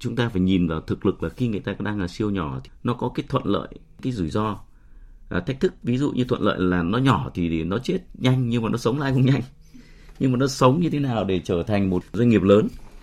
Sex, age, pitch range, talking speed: male, 30-49, 90-120 Hz, 275 wpm